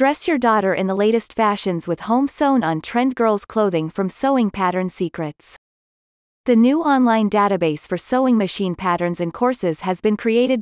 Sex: female